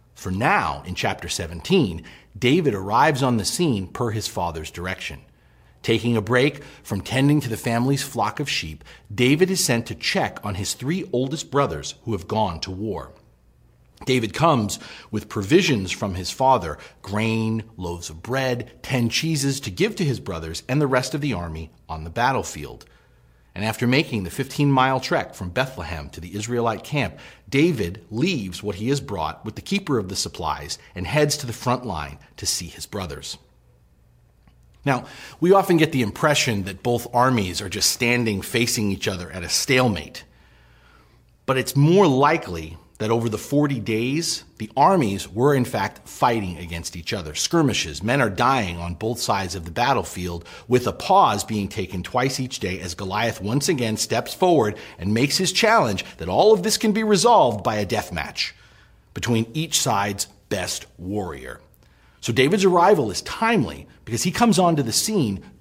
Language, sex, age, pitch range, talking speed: English, male, 40-59, 95-140 Hz, 175 wpm